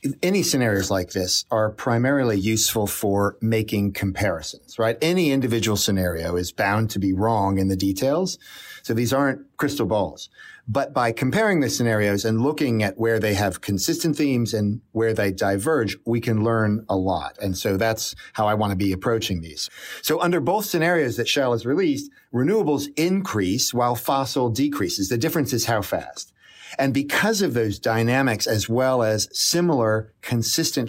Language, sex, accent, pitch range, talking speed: English, male, American, 100-130 Hz, 170 wpm